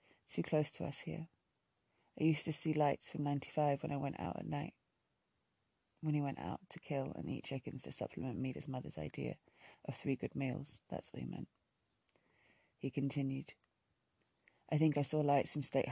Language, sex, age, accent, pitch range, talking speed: English, female, 20-39, British, 135-155 Hz, 185 wpm